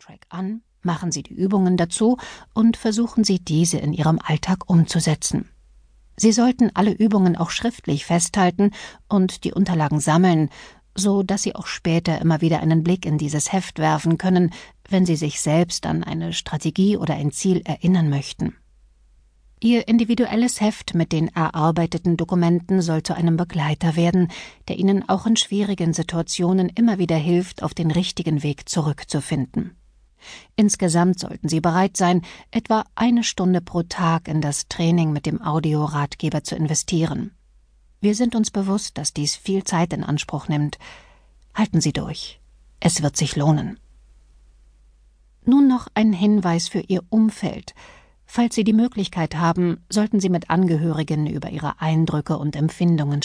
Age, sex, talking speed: 50-69, female, 150 wpm